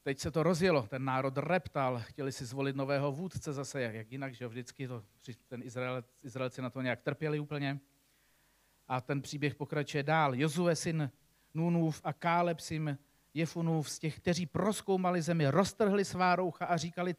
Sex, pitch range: male, 135-185 Hz